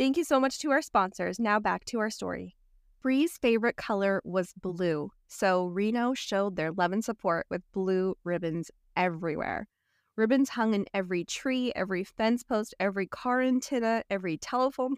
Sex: female